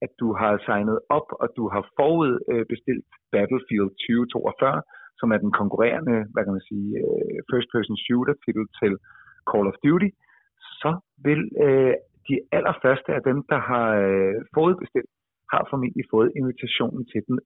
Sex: male